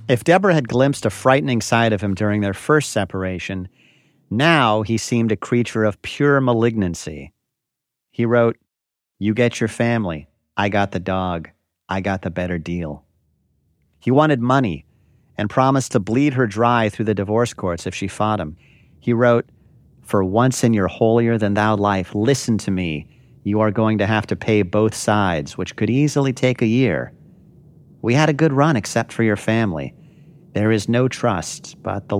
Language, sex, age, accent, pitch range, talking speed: English, male, 40-59, American, 100-120 Hz, 175 wpm